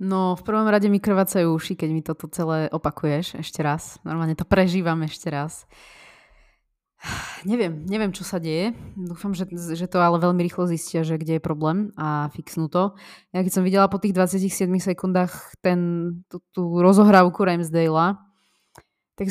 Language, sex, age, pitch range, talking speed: Slovak, female, 20-39, 160-190 Hz, 165 wpm